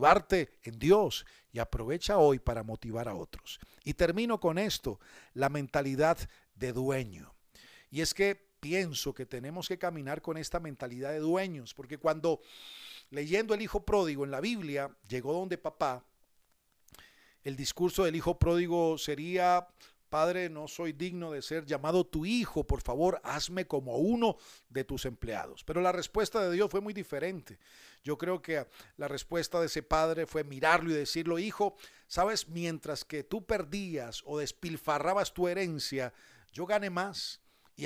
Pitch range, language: 145-185 Hz, Spanish